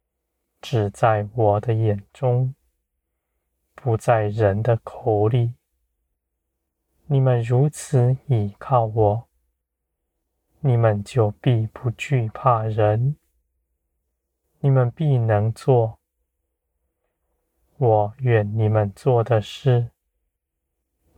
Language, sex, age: Chinese, male, 20-39